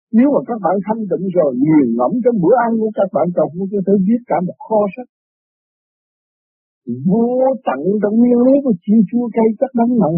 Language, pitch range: Vietnamese, 150-220 Hz